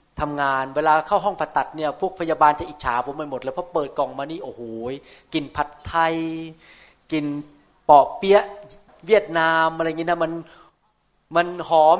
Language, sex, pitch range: Thai, male, 150-185 Hz